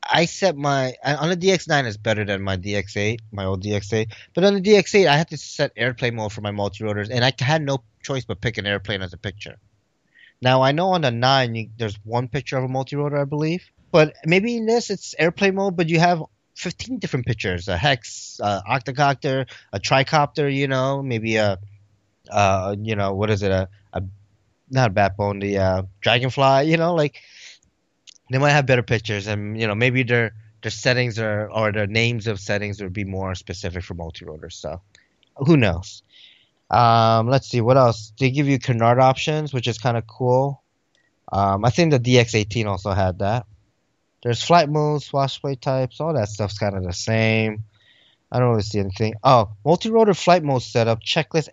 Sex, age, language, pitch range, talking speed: male, 20-39, English, 105-135 Hz, 195 wpm